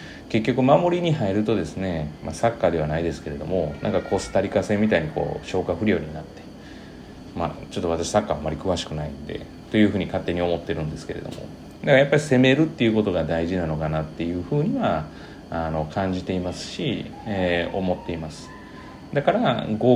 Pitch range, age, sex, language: 85-120 Hz, 30-49, male, Japanese